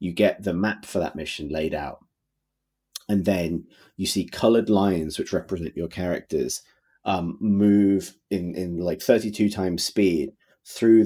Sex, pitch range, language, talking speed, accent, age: male, 85-100 Hz, English, 150 wpm, British, 30-49